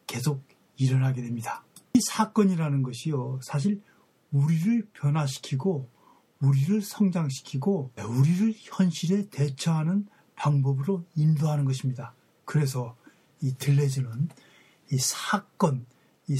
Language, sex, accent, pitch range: Korean, male, native, 135-185 Hz